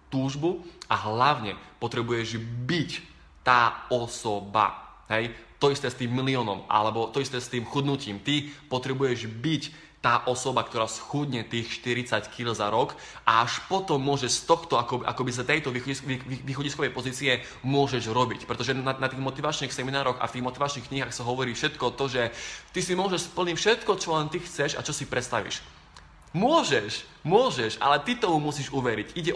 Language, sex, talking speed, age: Slovak, male, 170 wpm, 20-39